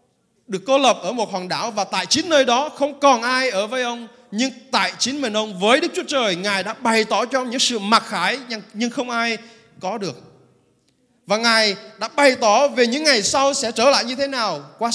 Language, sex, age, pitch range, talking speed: Vietnamese, male, 20-39, 185-250 Hz, 230 wpm